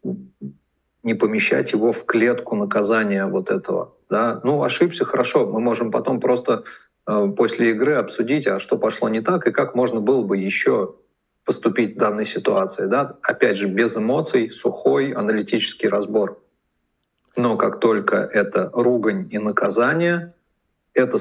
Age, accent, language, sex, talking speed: 30-49, native, Russian, male, 140 wpm